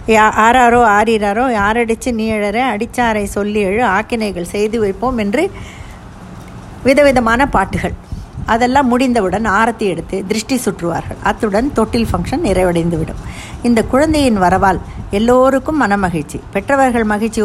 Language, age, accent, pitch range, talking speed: Tamil, 50-69, native, 190-250 Hz, 105 wpm